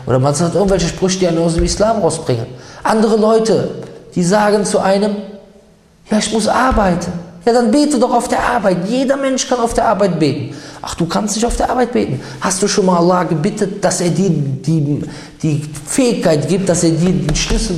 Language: German